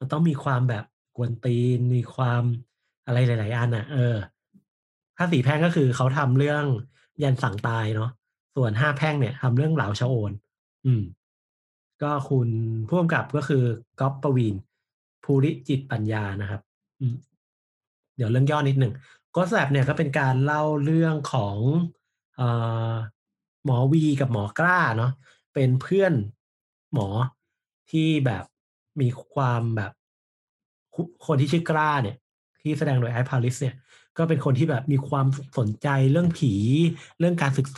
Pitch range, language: 120-150 Hz, Thai